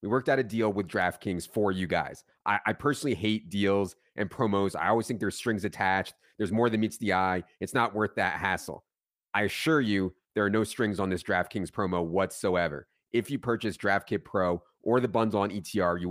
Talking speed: 210 wpm